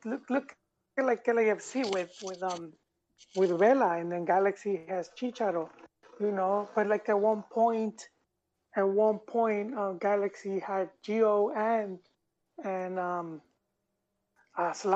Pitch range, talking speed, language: 195-240 Hz, 120 wpm, English